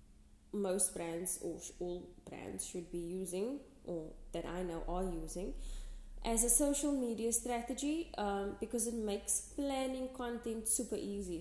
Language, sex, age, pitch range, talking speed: English, female, 20-39, 175-230 Hz, 145 wpm